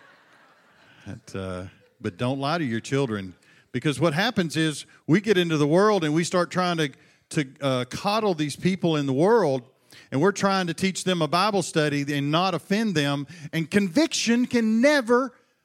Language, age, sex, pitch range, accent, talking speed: English, 50-69, male, 150-220 Hz, American, 180 wpm